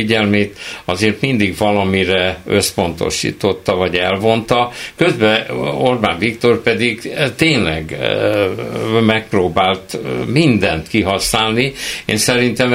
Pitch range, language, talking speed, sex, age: 95-120 Hz, Hungarian, 80 wpm, male, 60-79